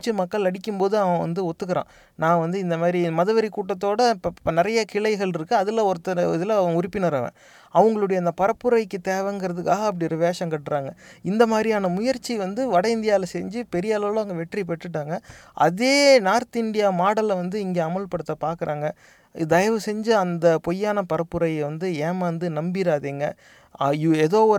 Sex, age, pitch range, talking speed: male, 30-49, 160-200 Hz, 170 wpm